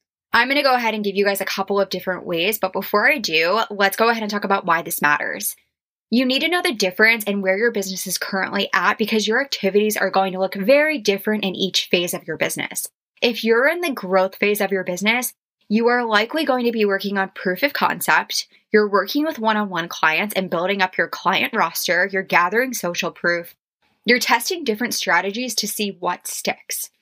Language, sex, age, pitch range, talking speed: English, female, 20-39, 190-240 Hz, 215 wpm